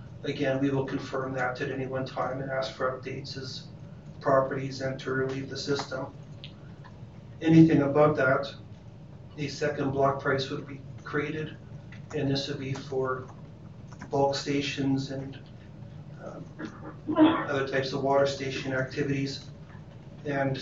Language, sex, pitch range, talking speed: English, male, 135-145 Hz, 135 wpm